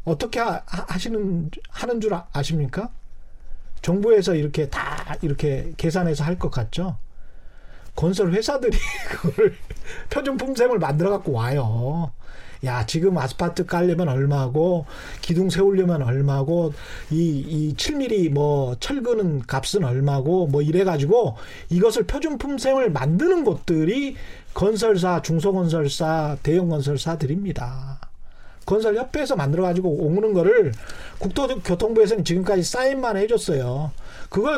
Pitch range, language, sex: 160-215 Hz, Korean, male